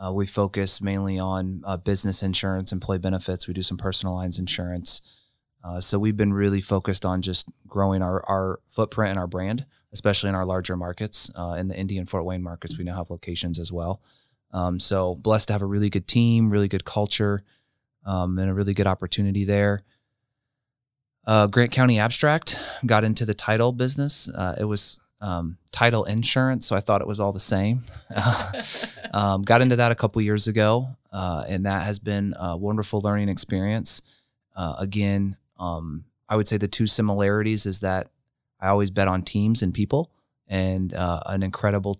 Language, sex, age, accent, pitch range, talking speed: English, male, 20-39, American, 95-105 Hz, 185 wpm